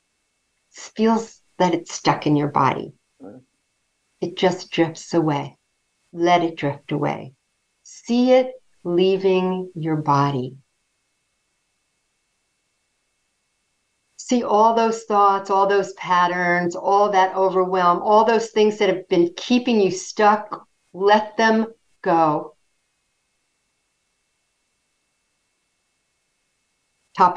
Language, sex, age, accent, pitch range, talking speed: English, female, 50-69, American, 170-220 Hz, 95 wpm